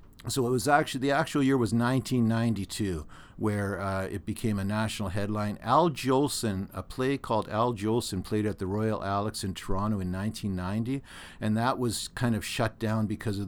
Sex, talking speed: male, 185 wpm